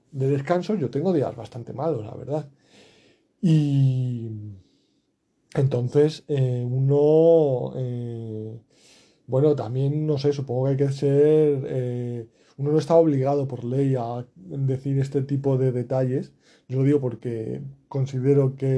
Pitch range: 125-150 Hz